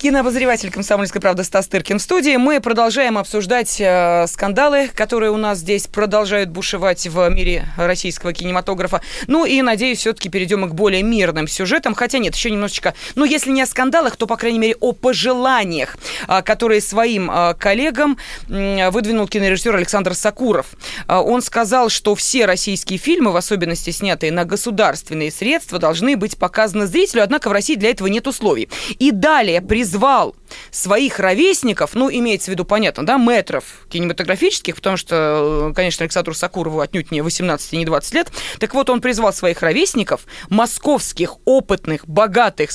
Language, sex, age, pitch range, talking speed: Russian, female, 20-39, 185-245 Hz, 155 wpm